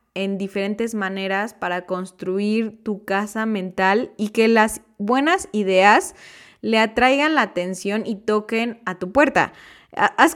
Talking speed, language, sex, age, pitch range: 135 wpm, Spanish, female, 20-39, 190-235 Hz